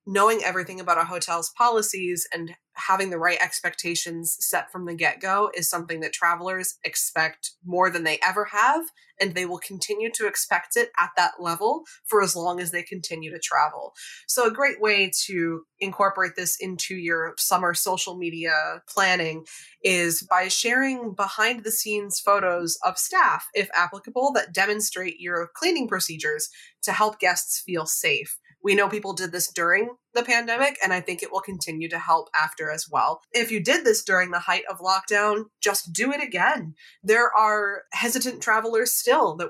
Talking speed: 170 wpm